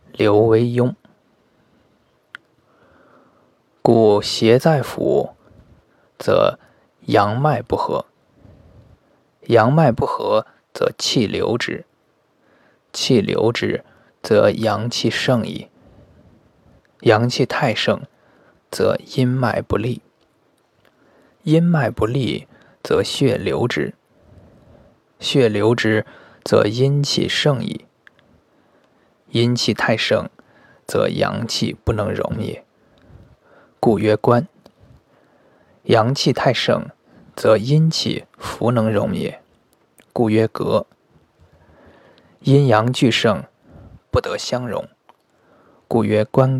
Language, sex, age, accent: Chinese, male, 20-39, native